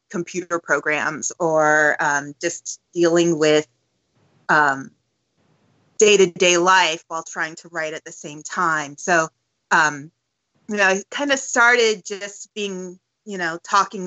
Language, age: English, 30-49